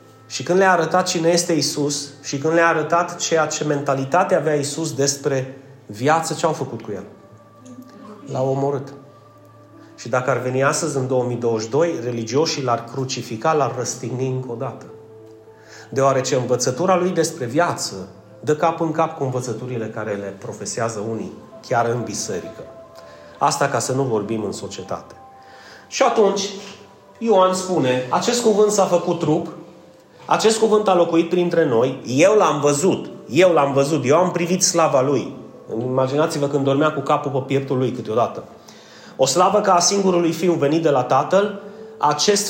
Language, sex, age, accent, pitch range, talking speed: Romanian, male, 30-49, native, 130-180 Hz, 155 wpm